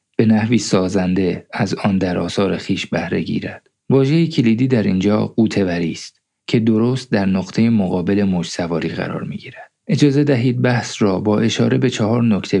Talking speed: 170 wpm